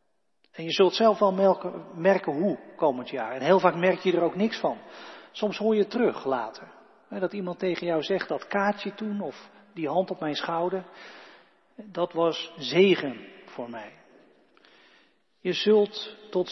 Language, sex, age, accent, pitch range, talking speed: Dutch, male, 40-59, Dutch, 155-195 Hz, 165 wpm